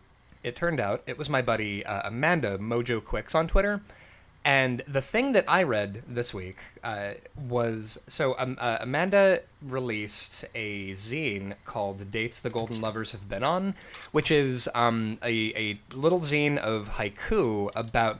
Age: 20-39